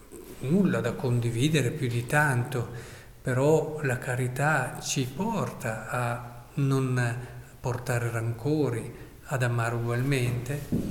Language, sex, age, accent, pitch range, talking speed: Italian, male, 50-69, native, 120-145 Hz, 100 wpm